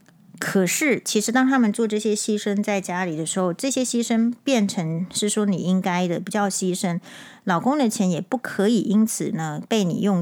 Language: Chinese